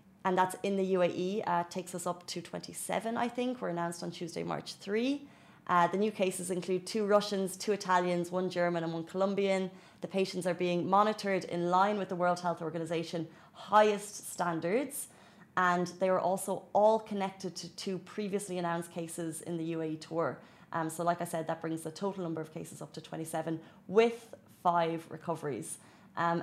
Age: 30-49